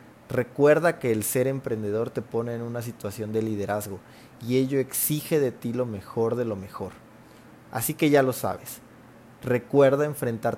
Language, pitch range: Spanish, 110-135 Hz